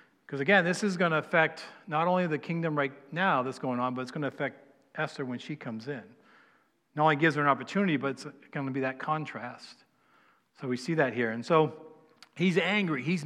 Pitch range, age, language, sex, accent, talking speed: 140-180 Hz, 40-59, English, male, American, 220 wpm